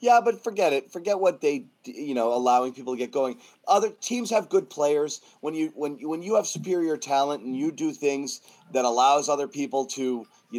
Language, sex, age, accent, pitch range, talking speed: English, male, 30-49, American, 125-175 Hz, 215 wpm